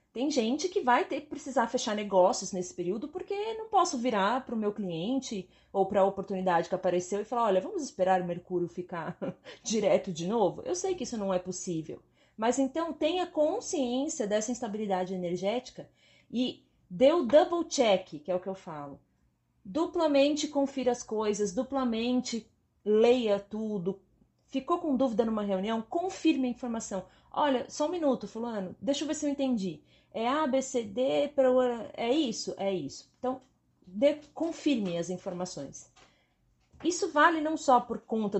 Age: 30-49